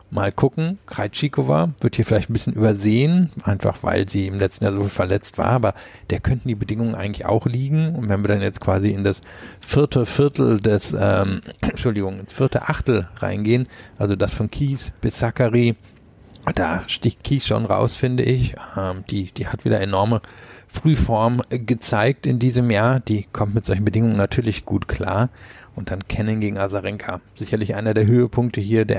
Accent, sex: German, male